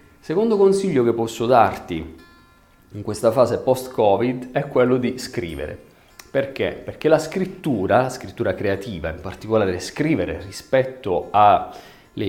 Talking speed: 120 wpm